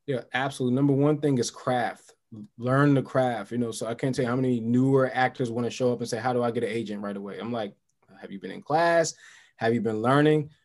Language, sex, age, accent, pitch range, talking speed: English, male, 20-39, American, 115-135 Hz, 260 wpm